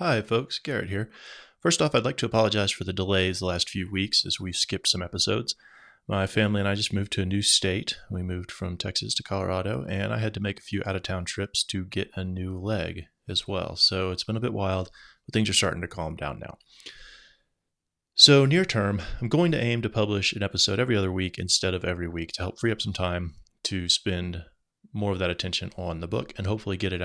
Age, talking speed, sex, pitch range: 30-49, 235 wpm, male, 90-110 Hz